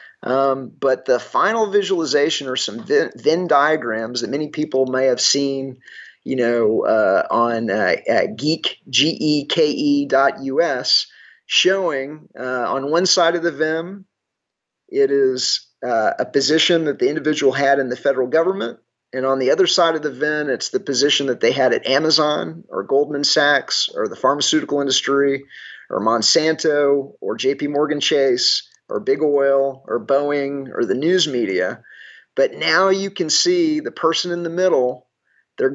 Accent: American